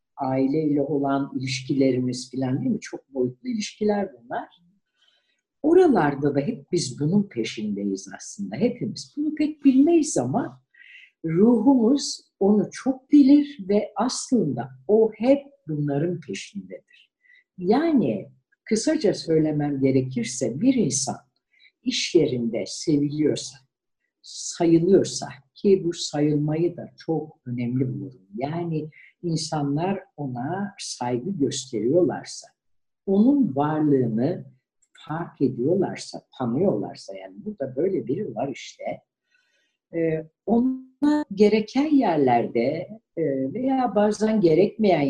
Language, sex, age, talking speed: Turkish, female, 60-79, 95 wpm